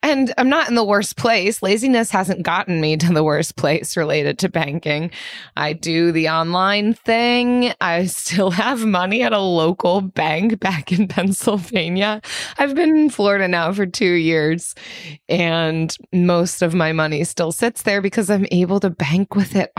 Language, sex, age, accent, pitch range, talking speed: English, female, 20-39, American, 160-215 Hz, 175 wpm